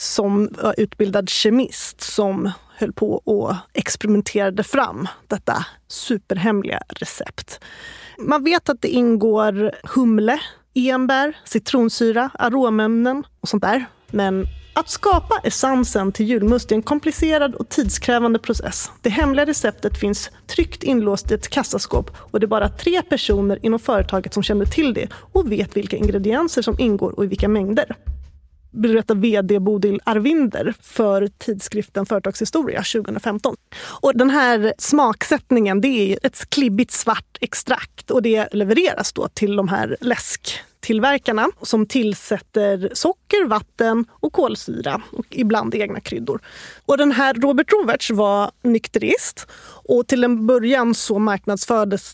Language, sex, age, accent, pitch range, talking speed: Swedish, female, 30-49, native, 205-265 Hz, 135 wpm